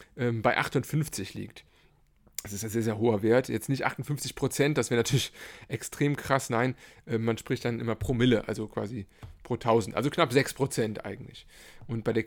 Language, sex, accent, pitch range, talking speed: German, male, German, 110-130 Hz, 180 wpm